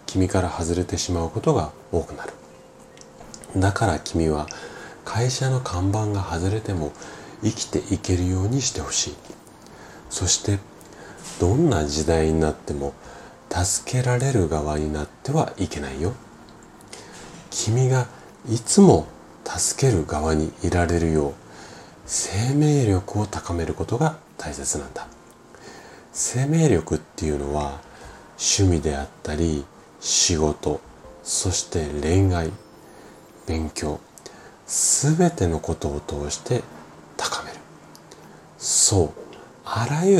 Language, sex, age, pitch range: Japanese, male, 40-59, 80-110 Hz